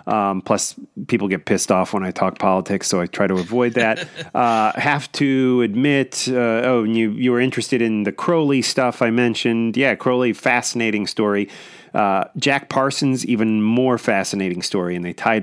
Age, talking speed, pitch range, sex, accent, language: 30-49, 180 wpm, 100-120 Hz, male, American, English